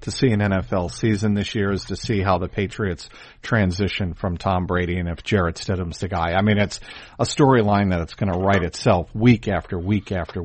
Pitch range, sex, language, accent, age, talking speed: 105-145 Hz, male, English, American, 50-69, 220 wpm